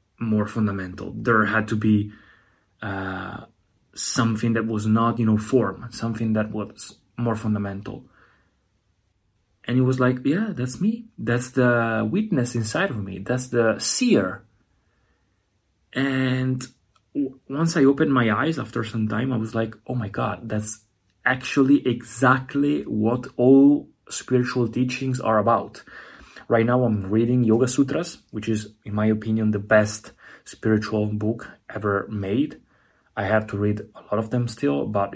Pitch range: 100-125 Hz